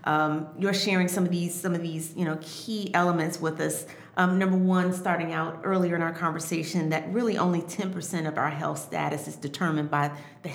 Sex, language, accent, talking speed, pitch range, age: female, English, American, 205 wpm, 150-175 Hz, 40-59